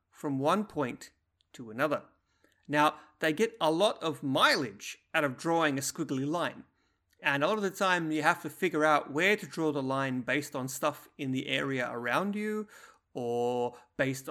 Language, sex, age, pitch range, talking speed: English, male, 30-49, 135-200 Hz, 185 wpm